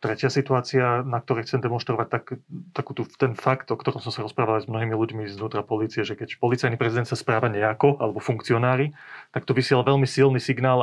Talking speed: 205 wpm